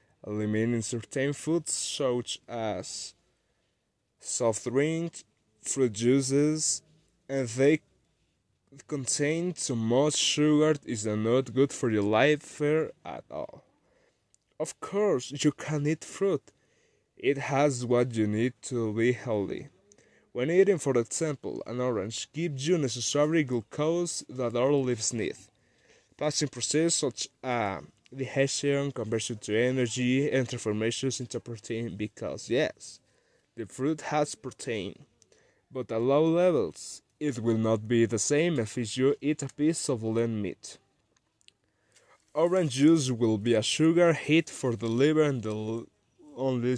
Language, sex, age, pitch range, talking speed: English, male, 20-39, 115-150 Hz, 135 wpm